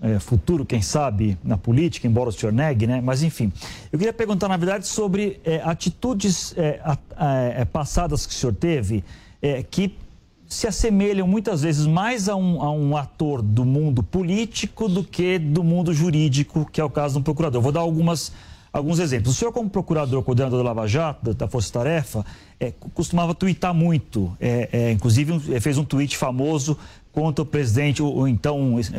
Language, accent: English, Brazilian